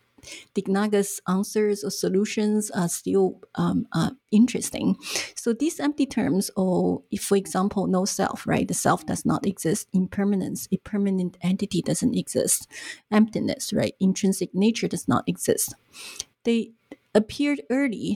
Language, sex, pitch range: English, female, 190-225 Hz